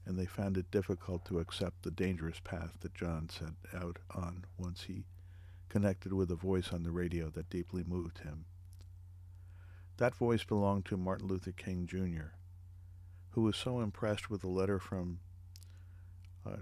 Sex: male